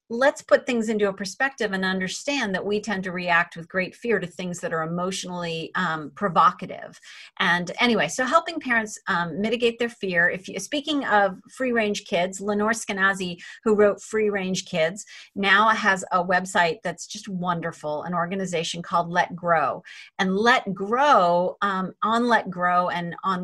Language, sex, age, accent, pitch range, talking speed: English, female, 40-59, American, 180-235 Hz, 170 wpm